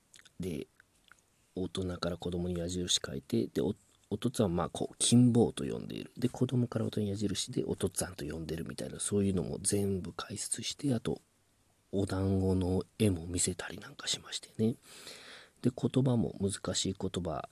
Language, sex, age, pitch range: Japanese, male, 40-59, 95-120 Hz